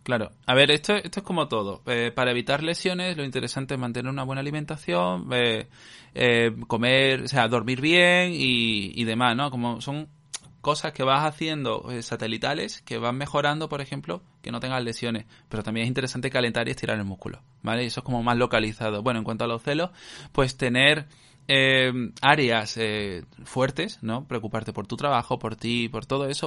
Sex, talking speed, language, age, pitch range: male, 190 wpm, Spanish, 20-39, 115-140 Hz